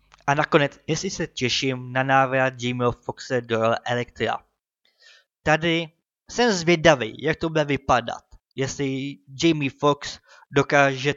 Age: 20-39